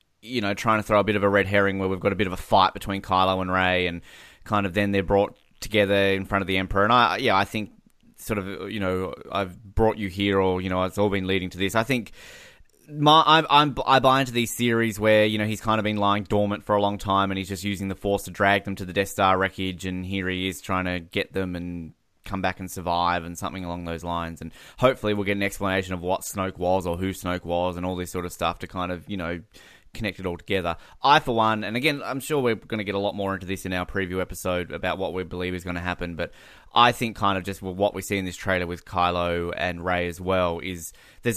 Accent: Australian